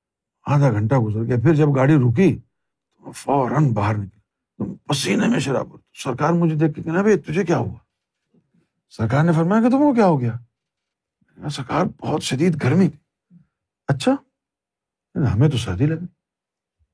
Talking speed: 50 wpm